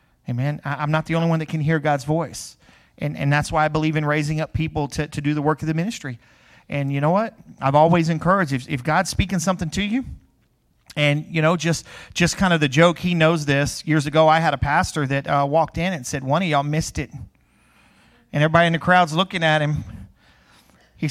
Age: 40-59